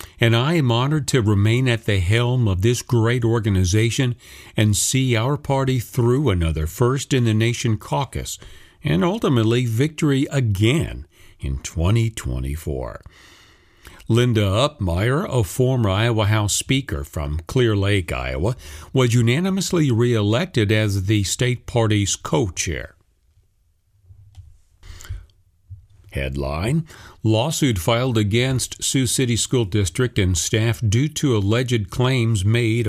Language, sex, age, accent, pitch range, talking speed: English, male, 50-69, American, 95-125 Hz, 115 wpm